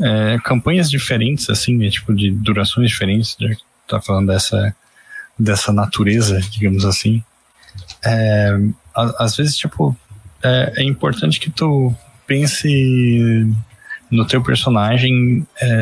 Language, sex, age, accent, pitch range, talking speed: Portuguese, male, 20-39, Brazilian, 105-125 Hz, 125 wpm